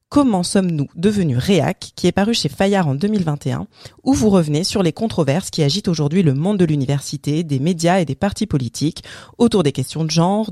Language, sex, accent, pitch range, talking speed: French, female, French, 145-195 Hz, 200 wpm